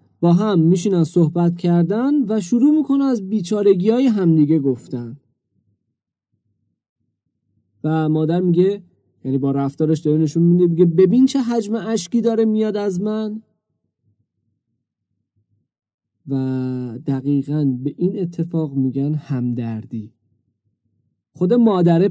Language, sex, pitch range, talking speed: Persian, male, 115-175 Hz, 105 wpm